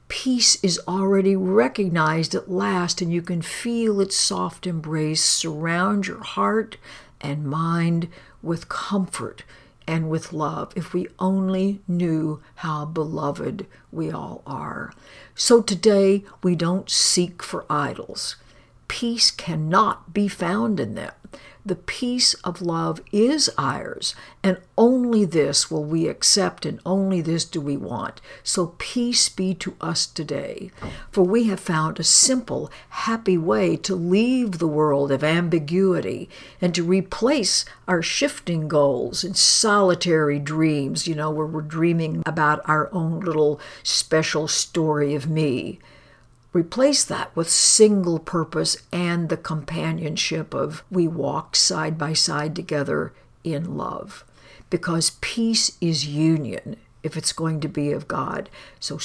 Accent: American